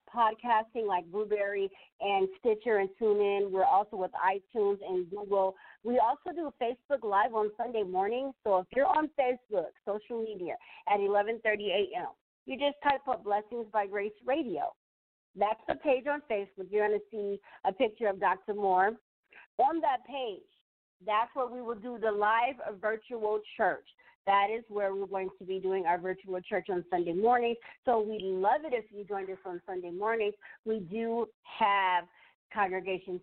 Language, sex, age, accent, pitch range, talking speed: English, female, 40-59, American, 195-235 Hz, 175 wpm